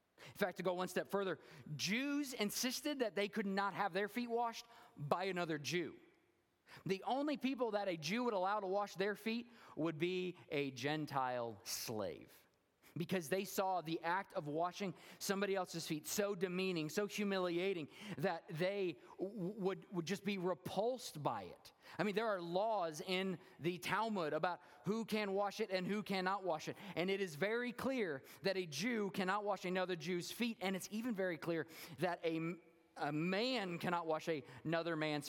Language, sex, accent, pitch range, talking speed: English, male, American, 165-210 Hz, 175 wpm